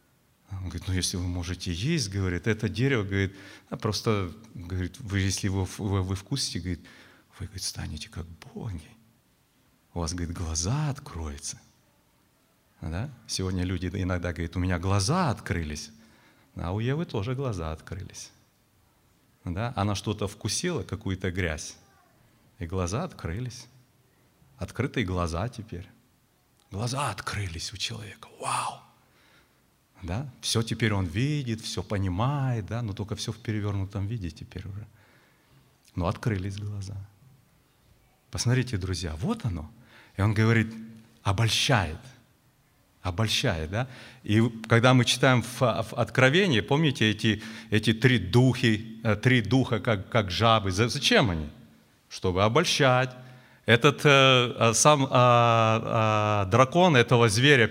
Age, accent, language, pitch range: 30-49, native, Russian, 95-125 Hz